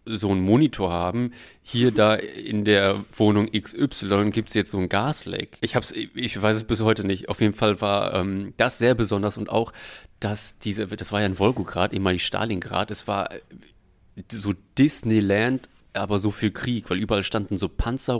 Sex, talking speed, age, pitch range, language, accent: male, 190 wpm, 30-49, 100-135 Hz, German, German